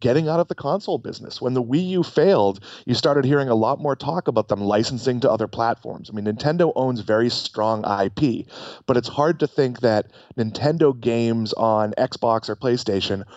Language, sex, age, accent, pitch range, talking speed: English, male, 30-49, American, 110-145 Hz, 195 wpm